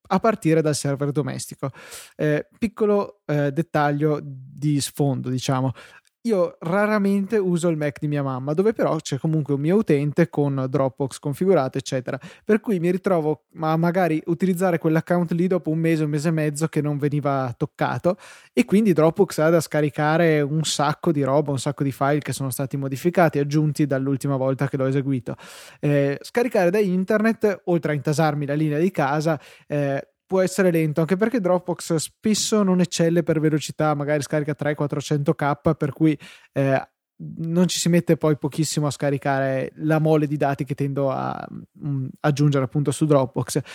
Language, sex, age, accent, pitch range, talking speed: Italian, male, 20-39, native, 145-175 Hz, 175 wpm